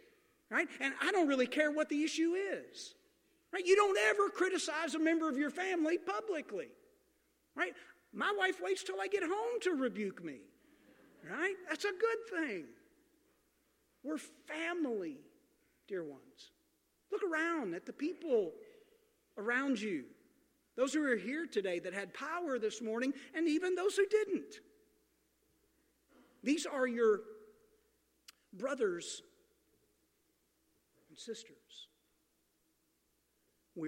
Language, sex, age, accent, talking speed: English, male, 50-69, American, 120 wpm